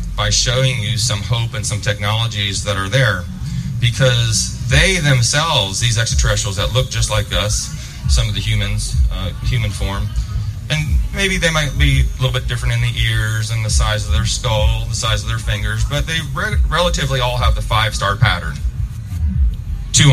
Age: 30-49